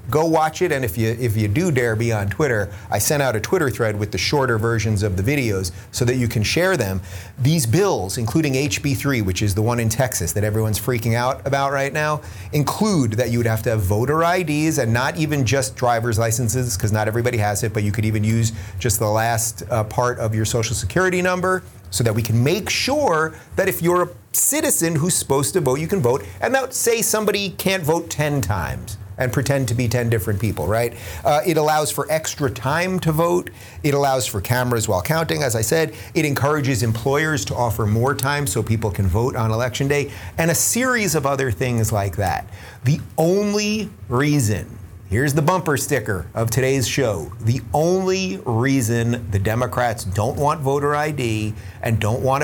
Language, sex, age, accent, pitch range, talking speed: English, male, 30-49, American, 110-150 Hz, 205 wpm